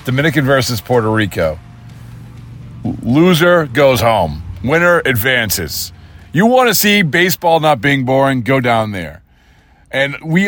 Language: English